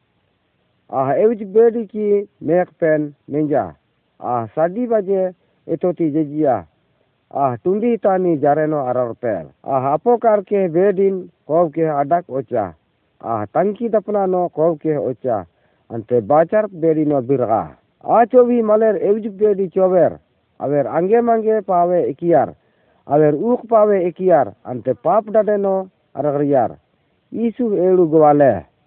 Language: Hindi